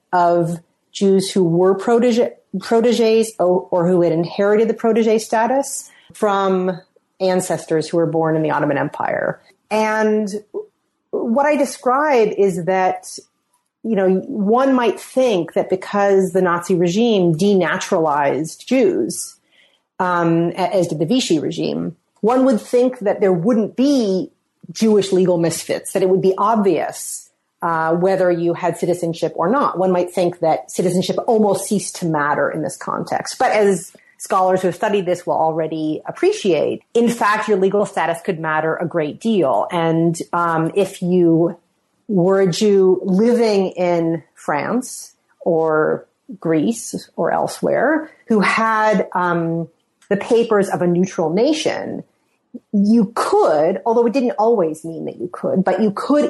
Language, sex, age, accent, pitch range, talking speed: English, female, 30-49, American, 175-225 Hz, 145 wpm